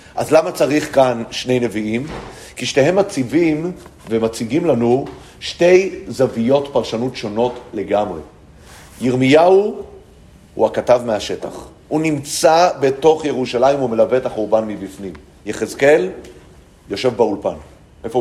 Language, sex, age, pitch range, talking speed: Hebrew, male, 40-59, 120-155 Hz, 110 wpm